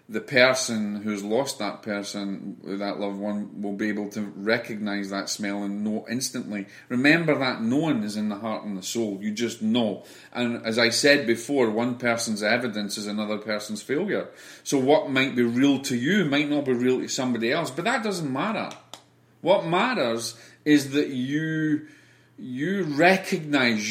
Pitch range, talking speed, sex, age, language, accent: 105-125 Hz, 175 wpm, male, 40-59, English, British